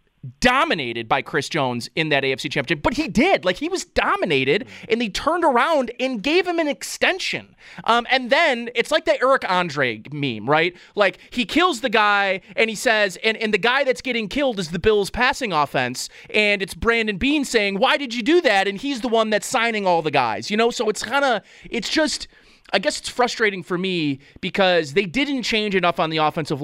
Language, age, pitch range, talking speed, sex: English, 30-49, 165-235 Hz, 215 wpm, male